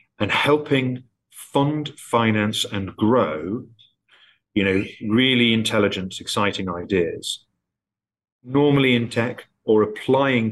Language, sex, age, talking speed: English, male, 40-59, 95 wpm